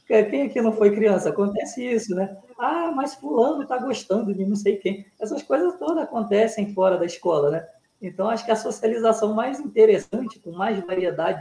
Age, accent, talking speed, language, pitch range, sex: 20-39, Brazilian, 185 wpm, Portuguese, 180-225 Hz, female